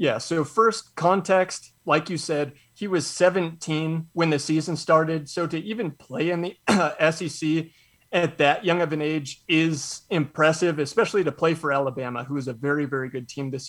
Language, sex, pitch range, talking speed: English, male, 150-180 Hz, 190 wpm